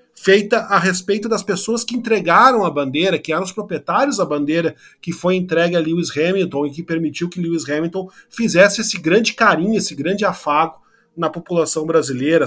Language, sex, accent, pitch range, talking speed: Portuguese, male, Brazilian, 170-220 Hz, 180 wpm